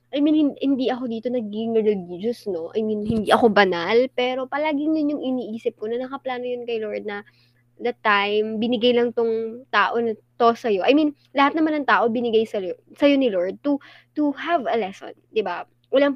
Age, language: 20-39, Filipino